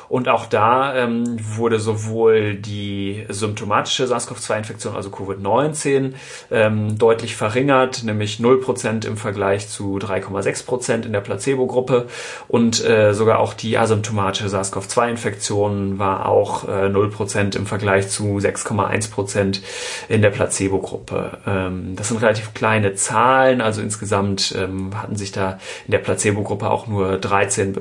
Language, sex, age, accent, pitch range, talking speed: German, male, 30-49, German, 100-120 Hz, 125 wpm